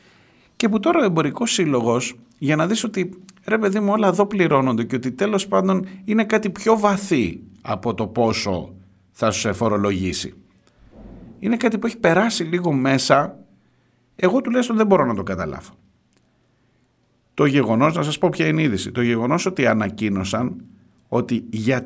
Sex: male